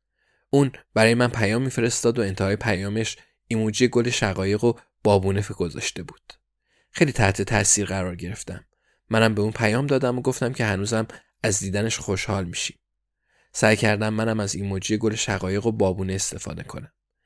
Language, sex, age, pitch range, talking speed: Persian, male, 20-39, 100-120 Hz, 155 wpm